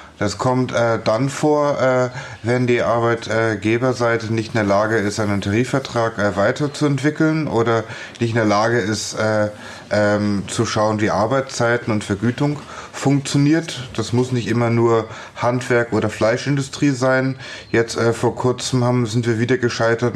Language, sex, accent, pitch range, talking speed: German, male, German, 110-125 Hz, 150 wpm